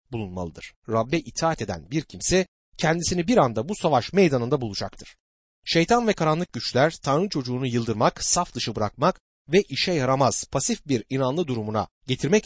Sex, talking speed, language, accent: male, 150 wpm, Turkish, native